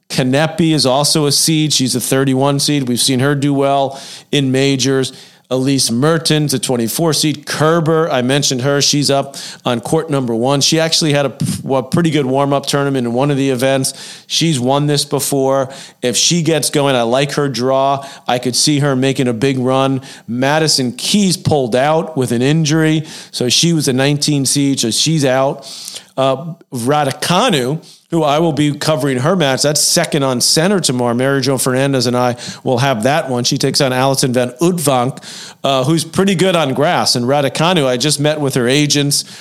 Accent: American